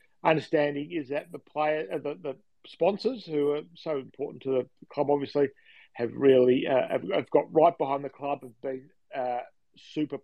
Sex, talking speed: male, 180 wpm